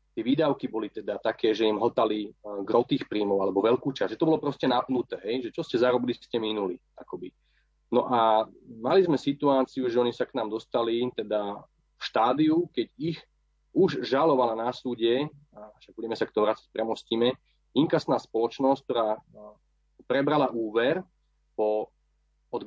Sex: male